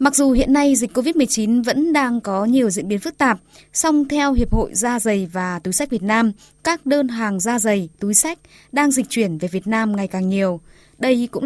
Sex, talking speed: female, 225 wpm